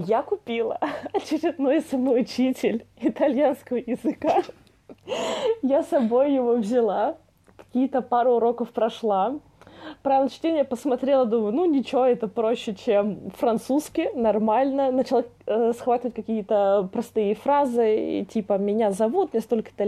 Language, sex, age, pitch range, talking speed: Russian, female, 20-39, 210-265 Hz, 110 wpm